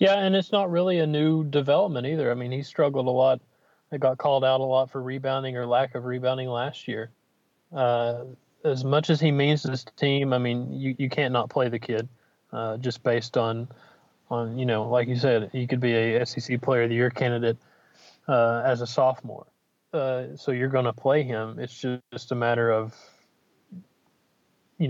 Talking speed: 205 wpm